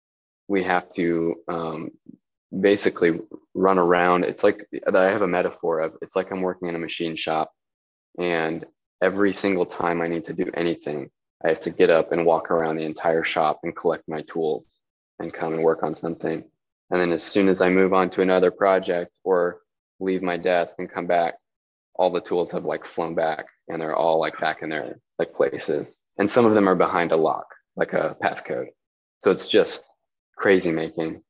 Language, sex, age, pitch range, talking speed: English, male, 20-39, 85-100 Hz, 195 wpm